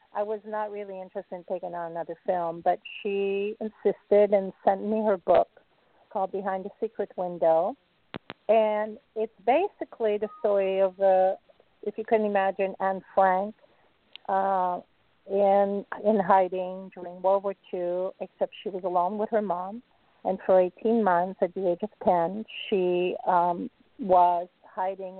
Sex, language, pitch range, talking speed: female, English, 180-215 Hz, 150 wpm